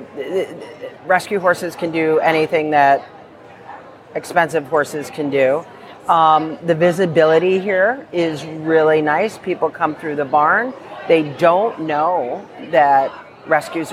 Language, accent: English, American